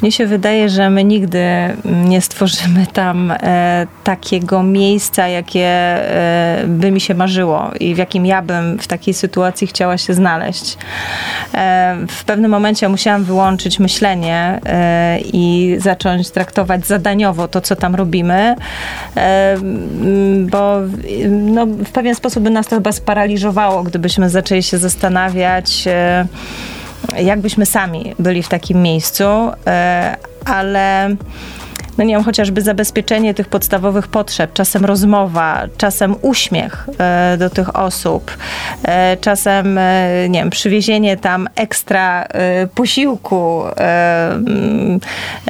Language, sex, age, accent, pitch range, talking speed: Polish, female, 20-39, native, 185-210 Hz, 115 wpm